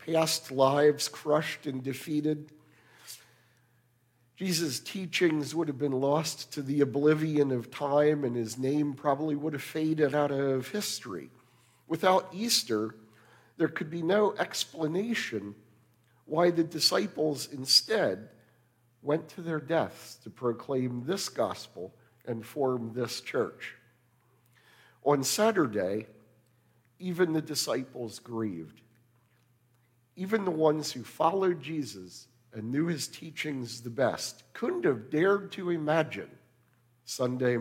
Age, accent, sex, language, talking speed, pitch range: 50-69, American, male, English, 115 wpm, 120-160 Hz